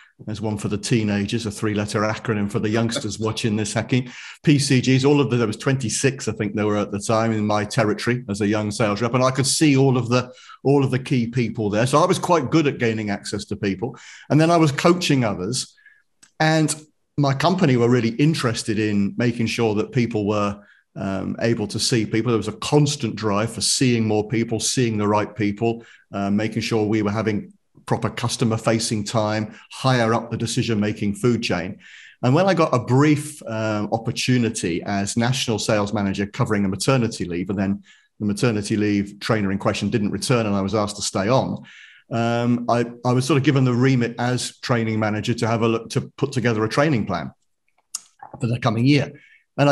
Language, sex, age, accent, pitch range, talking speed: English, male, 40-59, British, 105-130 Hz, 205 wpm